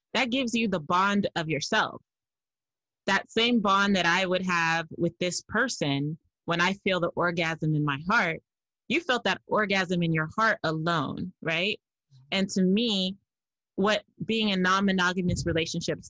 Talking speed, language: 155 wpm, English